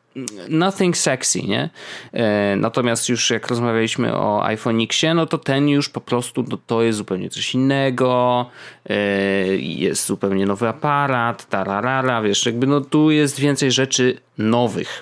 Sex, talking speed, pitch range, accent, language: male, 140 wpm, 110-140 Hz, native, Polish